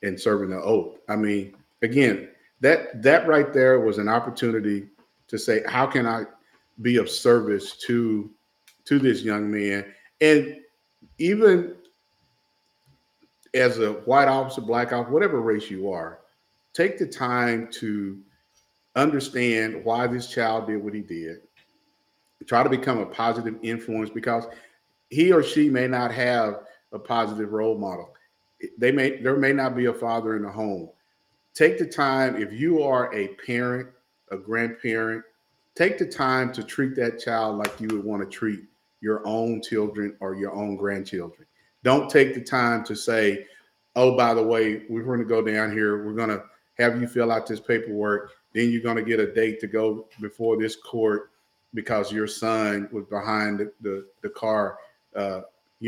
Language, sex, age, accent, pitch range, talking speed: English, male, 50-69, American, 105-125 Hz, 170 wpm